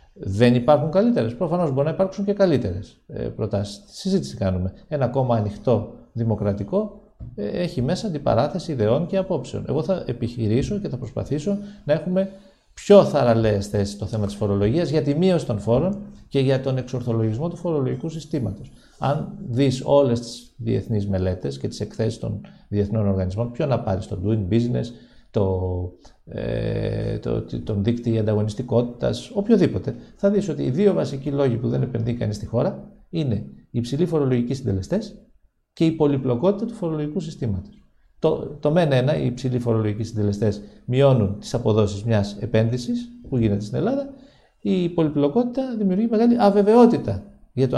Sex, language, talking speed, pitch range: male, Greek, 155 wpm, 110-175 Hz